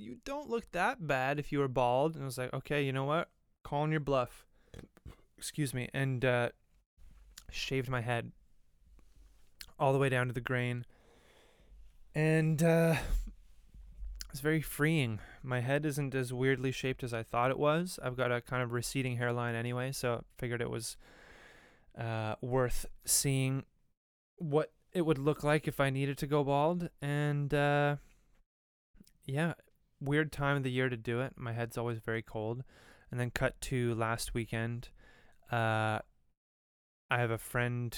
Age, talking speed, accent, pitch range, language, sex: 20-39, 165 wpm, American, 115-140 Hz, English, male